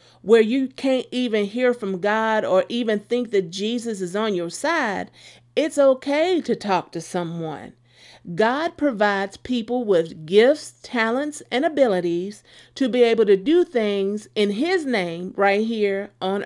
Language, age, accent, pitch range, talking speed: English, 40-59, American, 185-255 Hz, 155 wpm